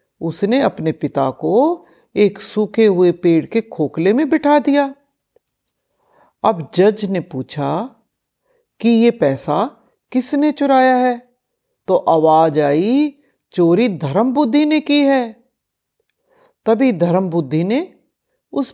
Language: Hindi